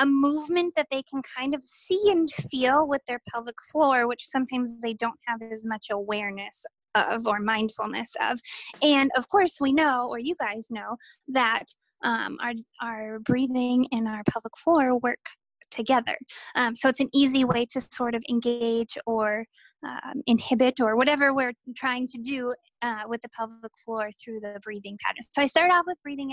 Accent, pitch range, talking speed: American, 230-270 Hz, 180 wpm